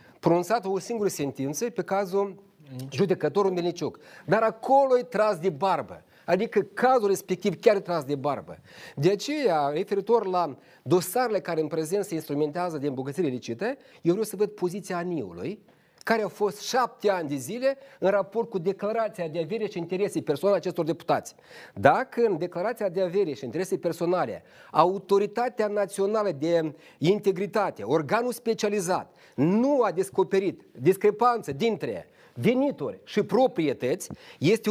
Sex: male